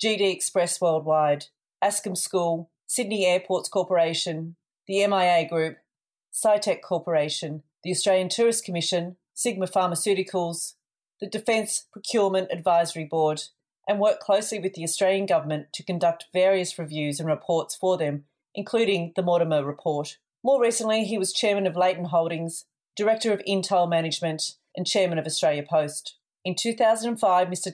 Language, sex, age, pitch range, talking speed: English, female, 40-59, 165-200 Hz, 135 wpm